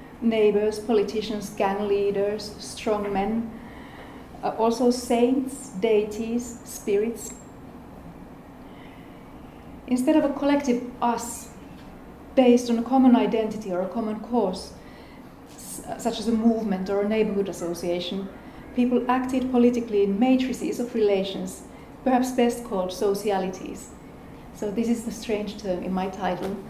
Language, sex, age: English, female, 30-49